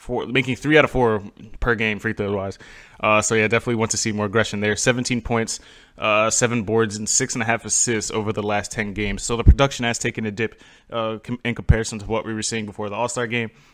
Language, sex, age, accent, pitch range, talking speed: English, male, 20-39, American, 105-120 Hz, 245 wpm